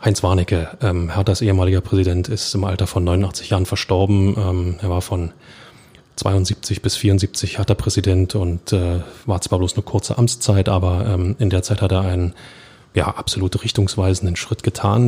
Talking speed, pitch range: 165 wpm, 95-110 Hz